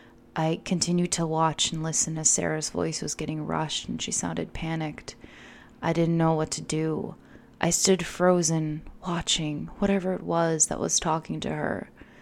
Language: English